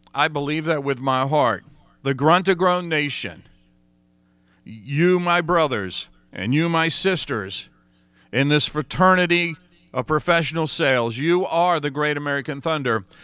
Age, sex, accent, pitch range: 50-69, male, American, 130-165 Hz